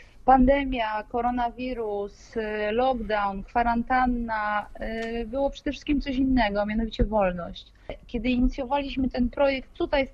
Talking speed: 105 wpm